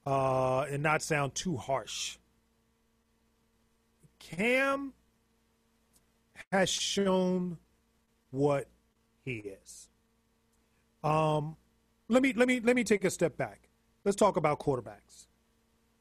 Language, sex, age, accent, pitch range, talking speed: English, male, 40-59, American, 115-185 Hz, 105 wpm